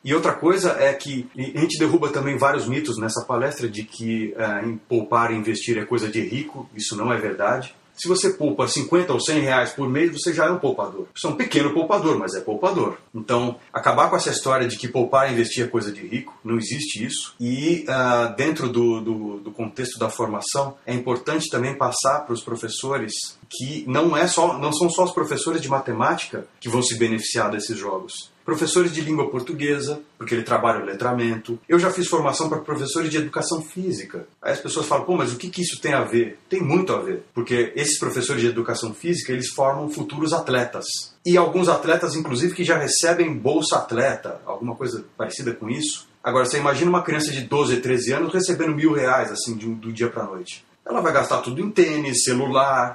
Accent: Brazilian